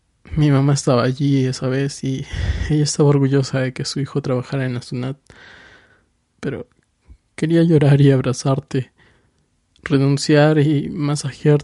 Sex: male